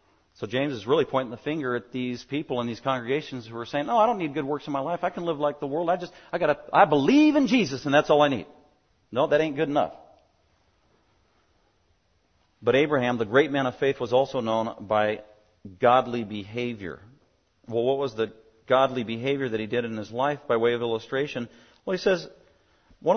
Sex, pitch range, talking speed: male, 110-145 Hz, 210 wpm